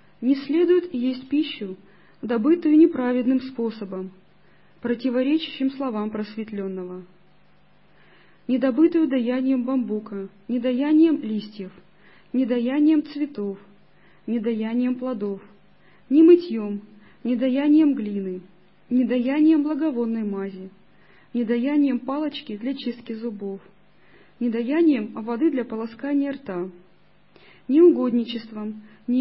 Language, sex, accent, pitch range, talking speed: Russian, female, native, 210-275 Hz, 85 wpm